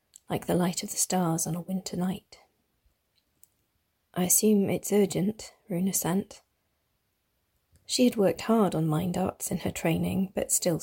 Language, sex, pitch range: English, female, 175-200 Hz